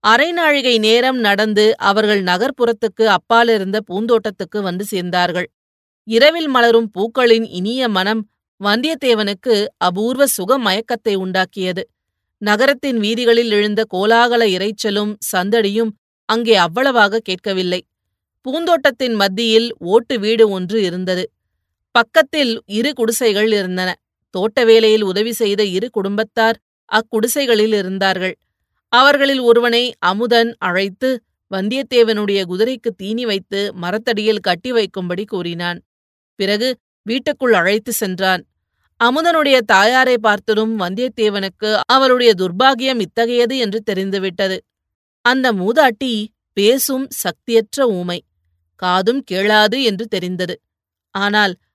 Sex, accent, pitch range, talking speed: female, native, 190-235 Hz, 95 wpm